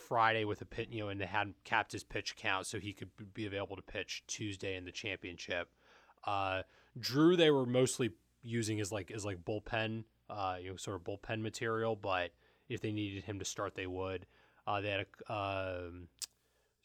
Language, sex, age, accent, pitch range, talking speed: English, male, 20-39, American, 90-115 Hz, 200 wpm